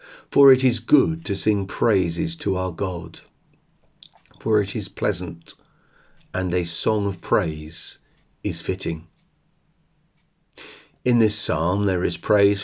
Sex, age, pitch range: male, 40-59, 90-115 Hz